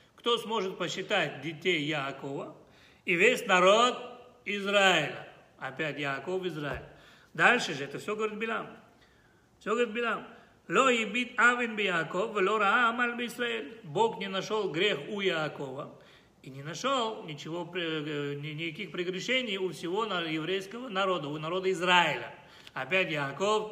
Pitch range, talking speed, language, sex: 160-215 Hz, 105 wpm, Russian, male